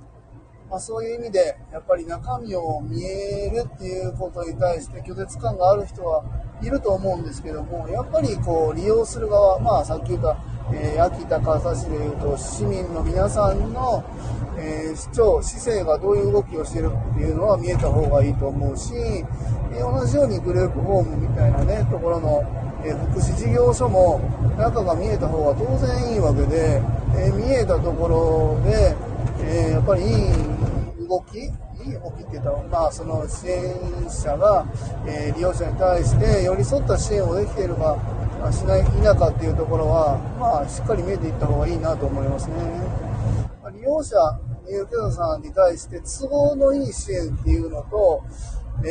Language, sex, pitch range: Japanese, male, 115-155 Hz